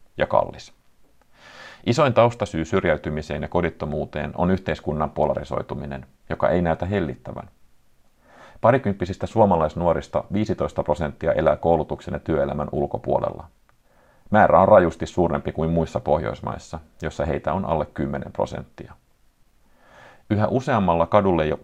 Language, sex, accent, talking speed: Finnish, male, native, 110 wpm